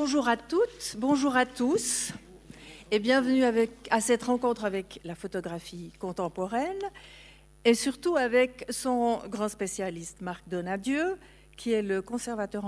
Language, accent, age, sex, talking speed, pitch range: French, French, 50-69, female, 135 wpm, 180-250 Hz